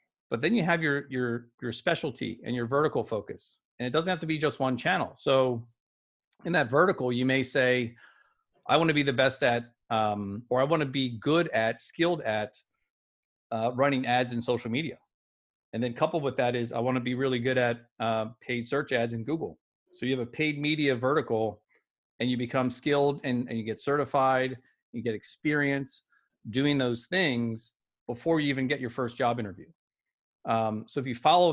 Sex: male